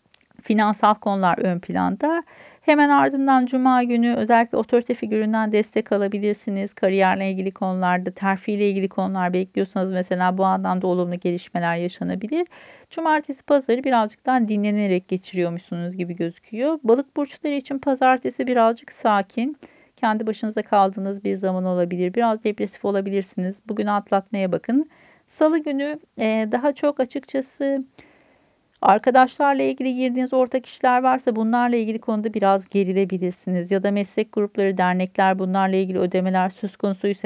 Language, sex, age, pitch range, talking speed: Turkish, female, 40-59, 190-245 Hz, 125 wpm